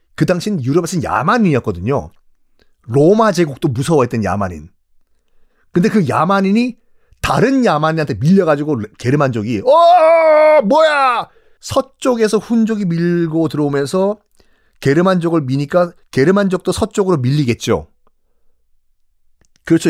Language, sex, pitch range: Korean, male, 135-205 Hz